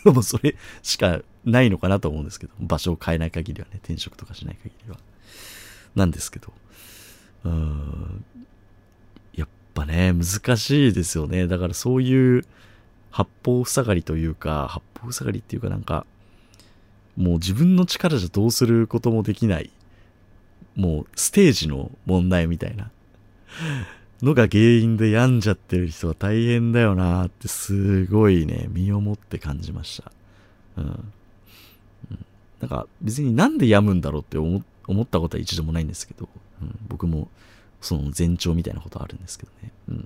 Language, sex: Japanese, male